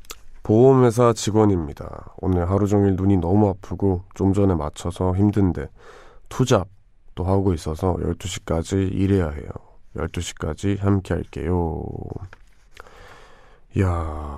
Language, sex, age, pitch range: Korean, male, 20-39, 90-105 Hz